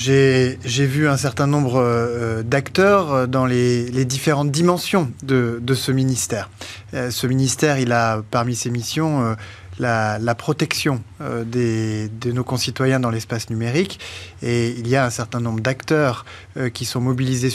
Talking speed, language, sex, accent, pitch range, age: 150 wpm, French, male, French, 115-140 Hz, 20-39